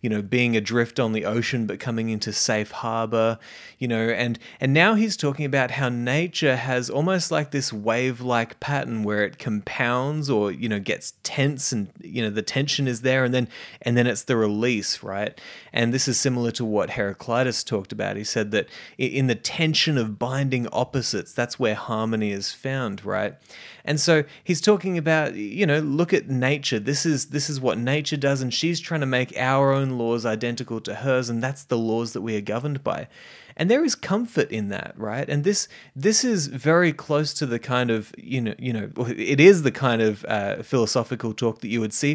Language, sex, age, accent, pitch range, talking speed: English, male, 20-39, Australian, 110-140 Hz, 205 wpm